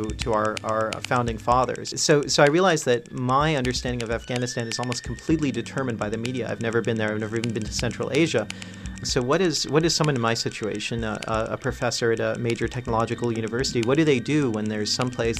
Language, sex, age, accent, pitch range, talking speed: English, male, 40-59, American, 110-130 Hz, 220 wpm